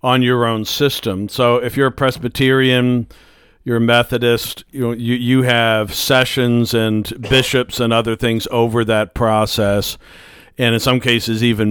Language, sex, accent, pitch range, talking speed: English, male, American, 110-125 Hz, 160 wpm